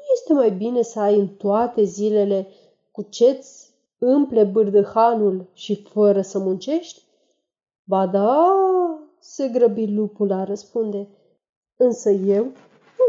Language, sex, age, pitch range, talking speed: Romanian, female, 30-49, 205-275 Hz, 120 wpm